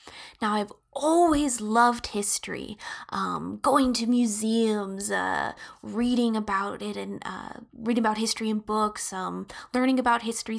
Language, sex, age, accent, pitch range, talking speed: English, female, 10-29, American, 200-260 Hz, 135 wpm